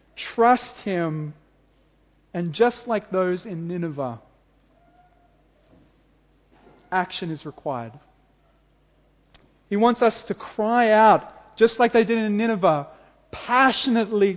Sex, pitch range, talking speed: male, 160-220 Hz, 100 wpm